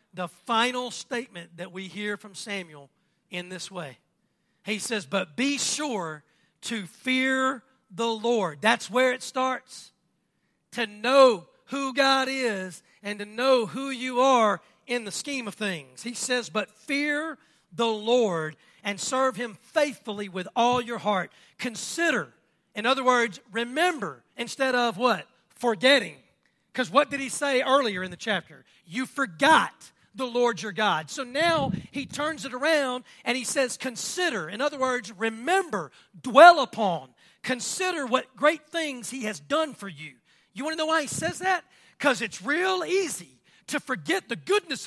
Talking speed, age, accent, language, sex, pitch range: 160 wpm, 40-59, American, English, male, 210-275 Hz